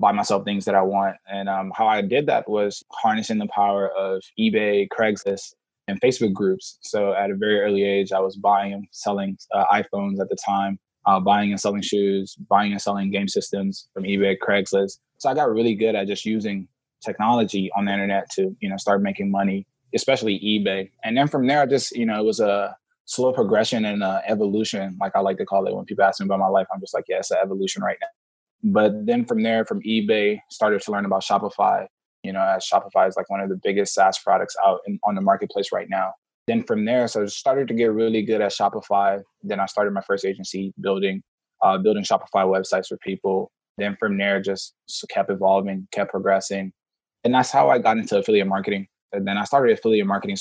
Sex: male